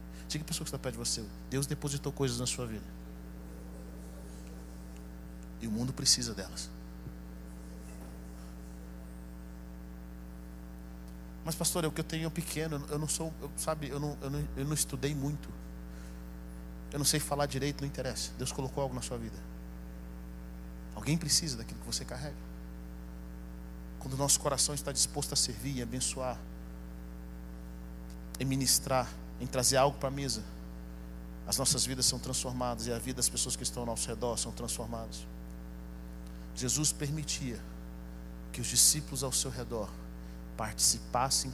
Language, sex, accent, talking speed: Portuguese, male, Brazilian, 150 wpm